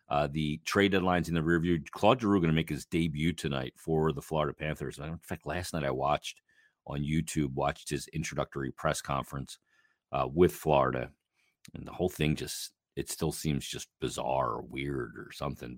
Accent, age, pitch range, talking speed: American, 40-59, 75-85 Hz, 185 wpm